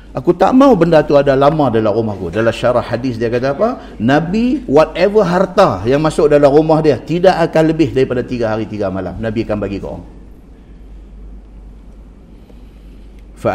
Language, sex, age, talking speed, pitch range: Malay, male, 50-69, 160 wpm, 100-135 Hz